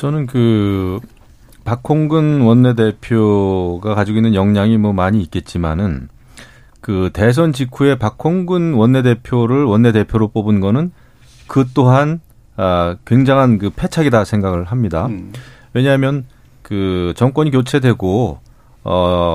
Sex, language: male, Korean